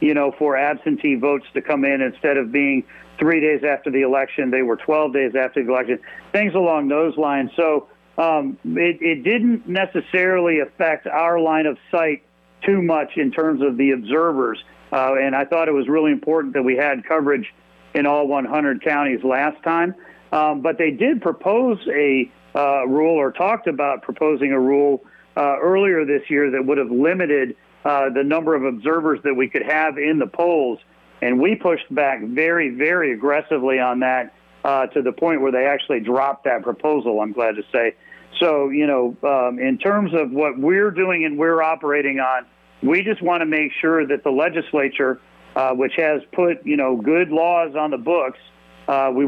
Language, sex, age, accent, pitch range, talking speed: English, male, 40-59, American, 130-160 Hz, 190 wpm